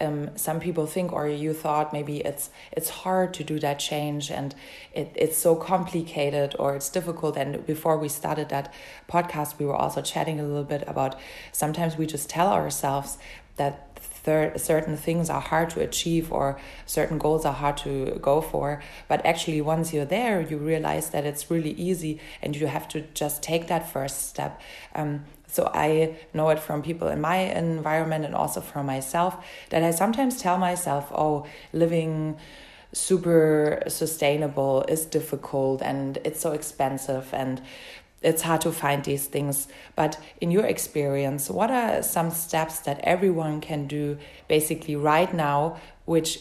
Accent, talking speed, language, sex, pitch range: German, 170 wpm, English, female, 145-165 Hz